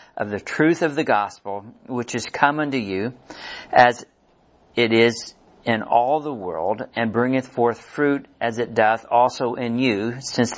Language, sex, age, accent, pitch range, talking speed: English, male, 50-69, American, 120-150 Hz, 165 wpm